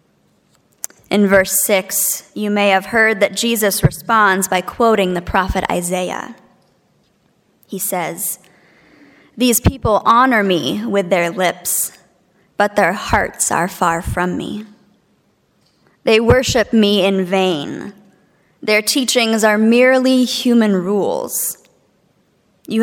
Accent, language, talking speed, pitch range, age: American, English, 115 wpm, 190-230 Hz, 20-39